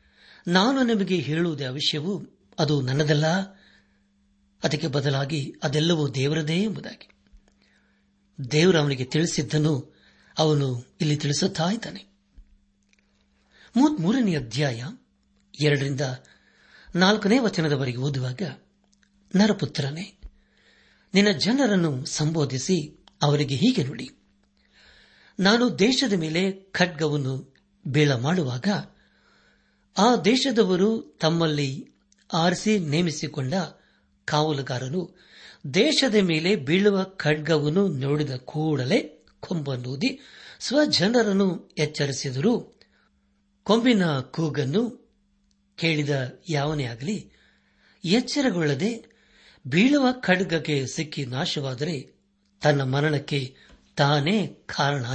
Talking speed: 75 wpm